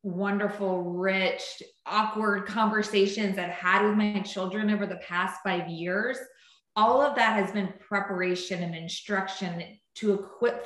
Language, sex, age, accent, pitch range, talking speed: English, female, 20-39, American, 180-210 Hz, 135 wpm